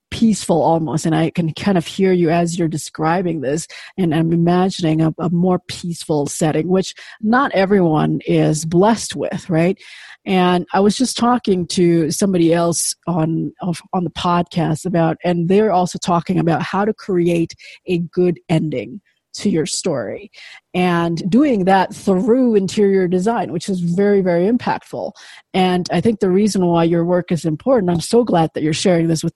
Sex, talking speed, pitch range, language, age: female, 170 wpm, 165-195 Hz, English, 40-59